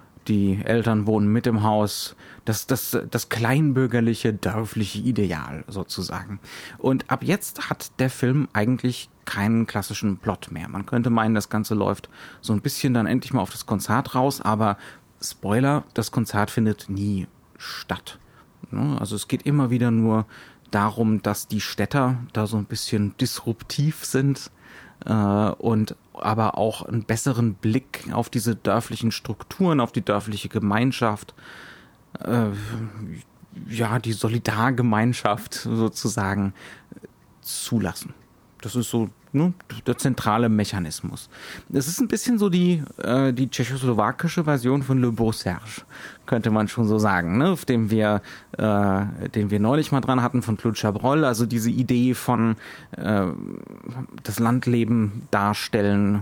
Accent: German